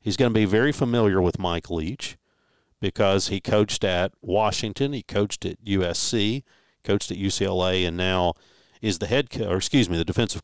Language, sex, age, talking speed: English, male, 50-69, 180 wpm